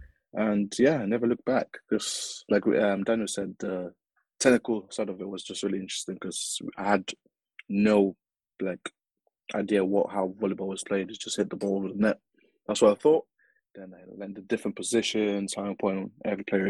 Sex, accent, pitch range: male, British, 100-120 Hz